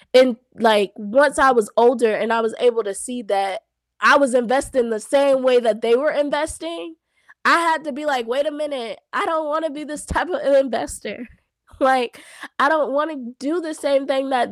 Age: 20-39